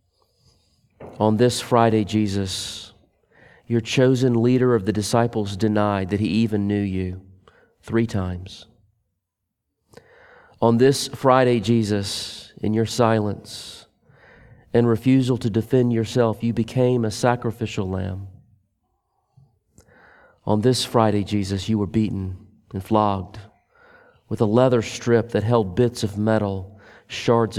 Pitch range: 100-120 Hz